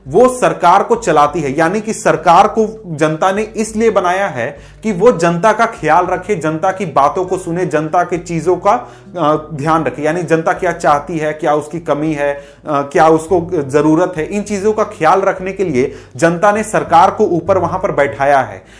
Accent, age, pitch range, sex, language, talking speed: native, 30-49, 165-215 Hz, male, Hindi, 190 wpm